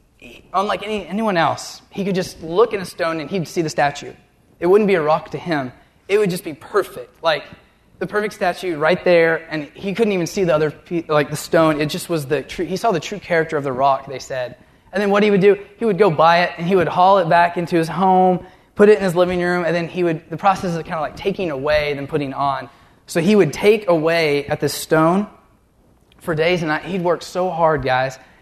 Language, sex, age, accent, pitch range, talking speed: English, male, 20-39, American, 155-190 Hz, 245 wpm